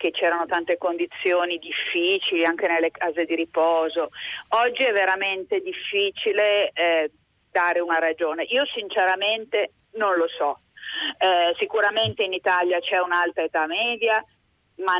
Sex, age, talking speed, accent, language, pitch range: female, 40-59, 130 wpm, native, Italian, 175-220 Hz